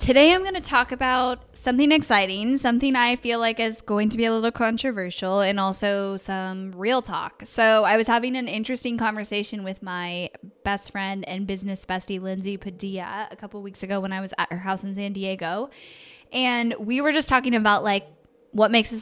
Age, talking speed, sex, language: 10-29, 200 wpm, female, English